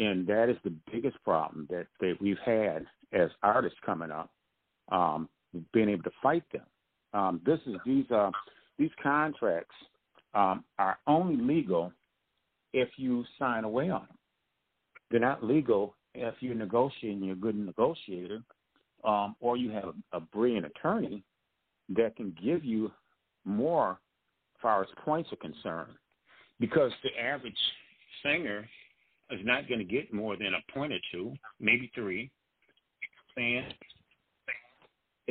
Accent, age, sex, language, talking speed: American, 50-69, male, English, 140 wpm